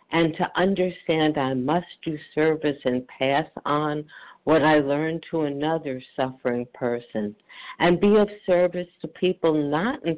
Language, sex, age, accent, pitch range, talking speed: English, female, 60-79, American, 130-170 Hz, 145 wpm